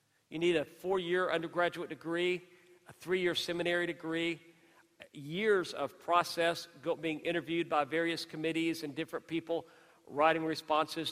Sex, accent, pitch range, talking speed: male, American, 155-185 Hz, 125 wpm